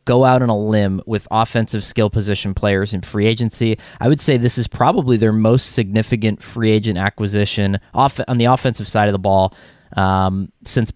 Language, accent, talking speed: English, American, 190 wpm